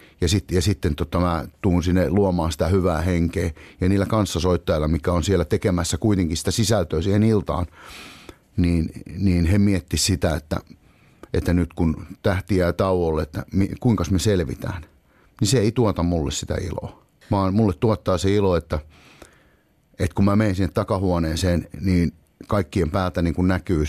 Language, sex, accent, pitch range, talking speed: Finnish, male, native, 85-100 Hz, 160 wpm